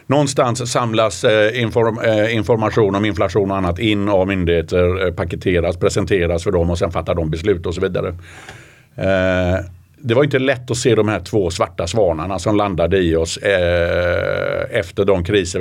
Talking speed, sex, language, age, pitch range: 175 wpm, male, Swedish, 50-69, 95-115 Hz